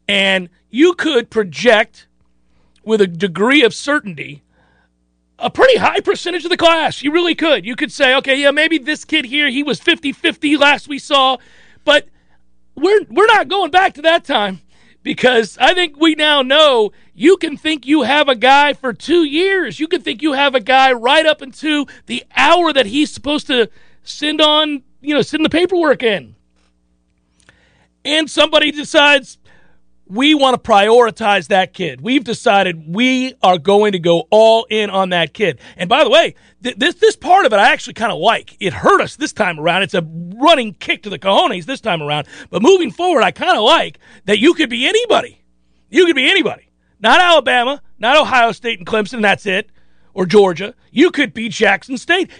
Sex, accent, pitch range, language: male, American, 200-310 Hz, English